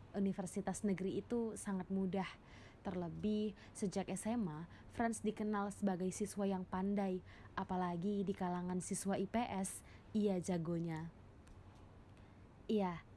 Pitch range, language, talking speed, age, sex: 180-210 Hz, Indonesian, 100 wpm, 20-39, female